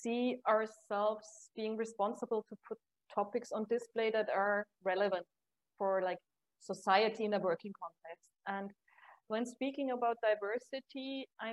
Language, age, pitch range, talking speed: English, 30-49, 200-230 Hz, 130 wpm